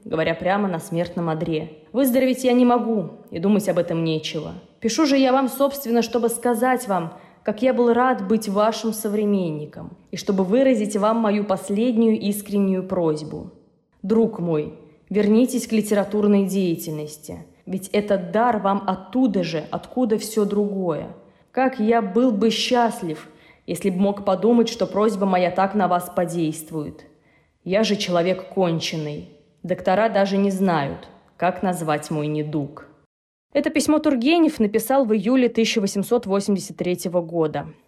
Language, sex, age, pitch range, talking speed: Russian, female, 20-39, 175-230 Hz, 140 wpm